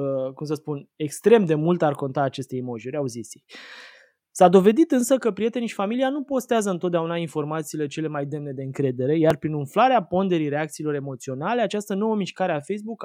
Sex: male